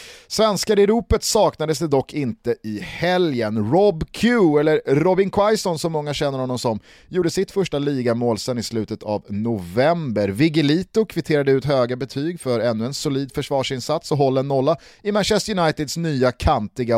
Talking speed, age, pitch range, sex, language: 165 wpm, 30-49, 120-180 Hz, male, Swedish